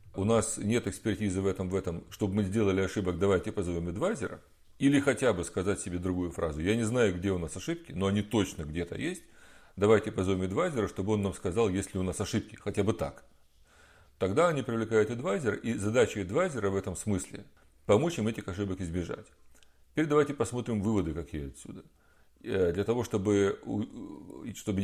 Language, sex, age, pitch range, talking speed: Russian, male, 40-59, 90-110 Hz, 175 wpm